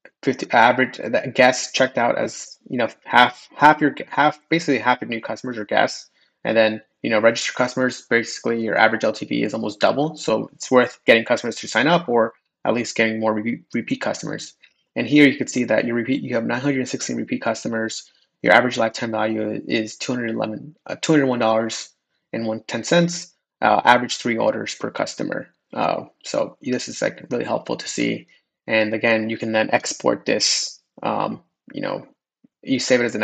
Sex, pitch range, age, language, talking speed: male, 115-130 Hz, 20-39, English, 175 wpm